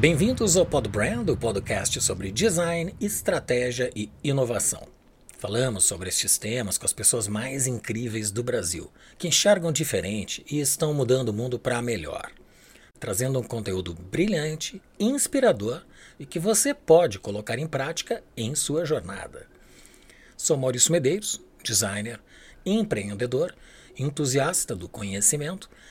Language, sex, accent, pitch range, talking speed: Portuguese, male, Brazilian, 110-165 Hz, 130 wpm